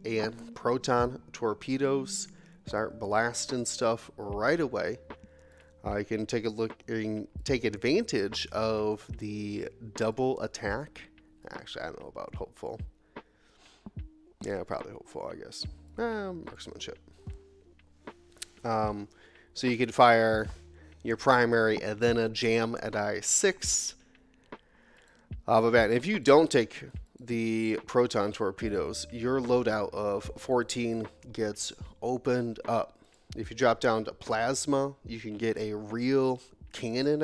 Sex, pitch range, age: male, 105-130 Hz, 30-49